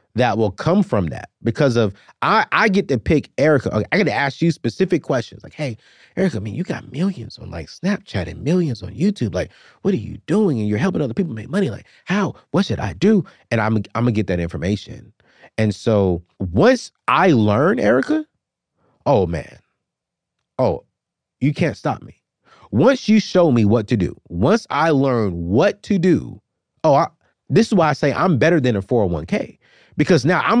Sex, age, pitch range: male, 30-49, 105-170 Hz